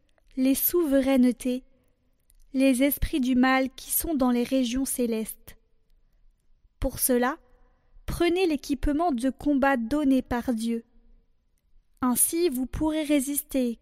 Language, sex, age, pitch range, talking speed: French, female, 20-39, 250-285 Hz, 110 wpm